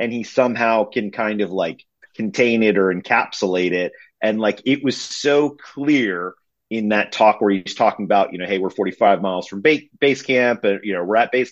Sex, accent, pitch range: male, American, 100-135 Hz